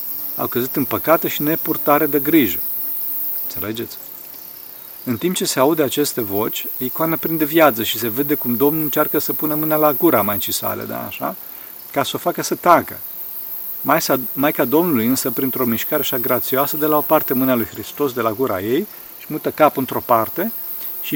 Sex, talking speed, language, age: male, 180 wpm, Romanian, 40-59